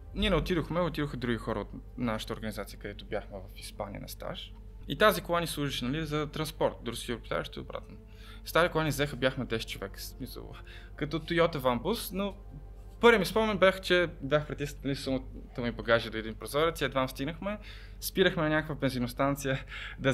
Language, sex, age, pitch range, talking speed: Bulgarian, male, 20-39, 110-155 Hz, 180 wpm